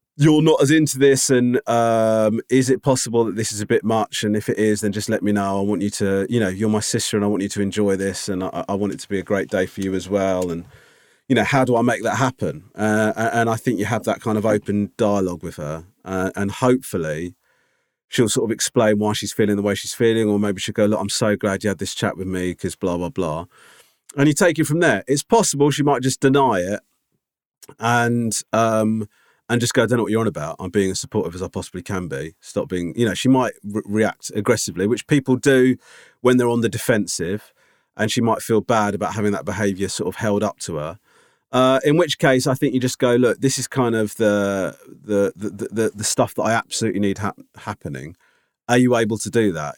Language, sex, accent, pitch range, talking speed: English, male, British, 100-125 Hz, 245 wpm